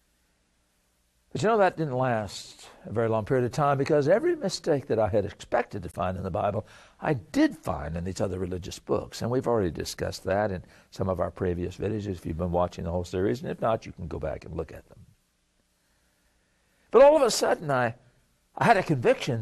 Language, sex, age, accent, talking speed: English, male, 60-79, American, 220 wpm